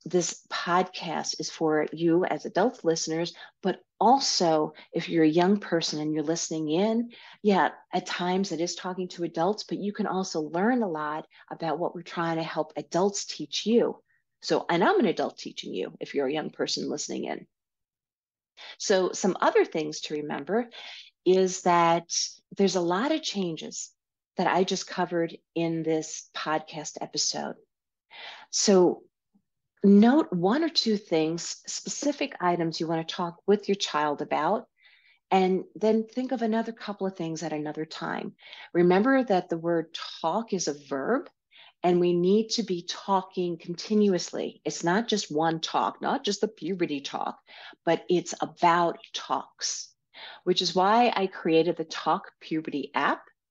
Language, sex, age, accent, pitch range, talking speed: English, female, 40-59, American, 160-200 Hz, 160 wpm